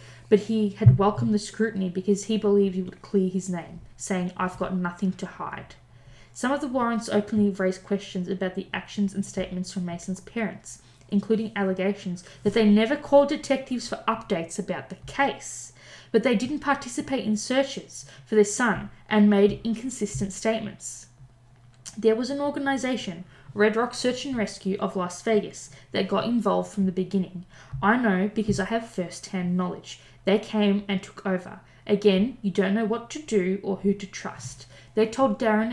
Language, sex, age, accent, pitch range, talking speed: English, female, 20-39, Australian, 185-220 Hz, 175 wpm